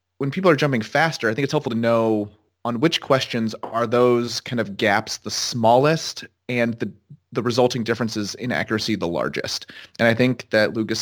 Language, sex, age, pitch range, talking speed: English, male, 30-49, 105-125 Hz, 190 wpm